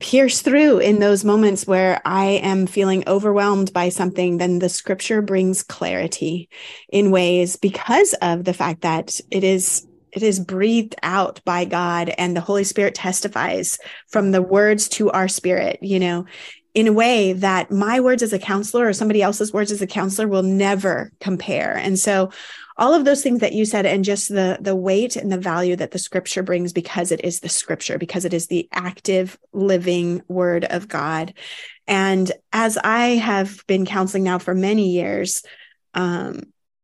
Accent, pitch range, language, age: American, 180-210 Hz, English, 30-49